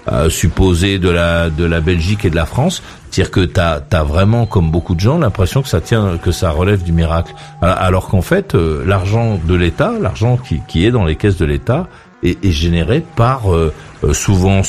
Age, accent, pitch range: 50-69, French, 90-125 Hz